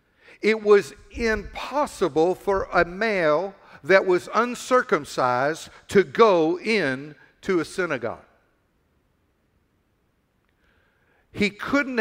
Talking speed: 85 wpm